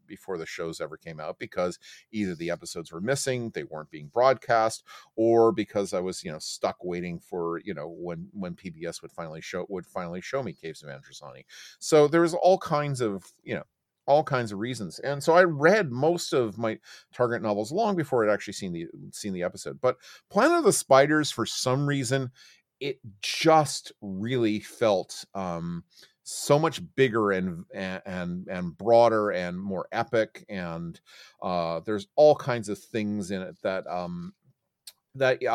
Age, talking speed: 40-59, 175 wpm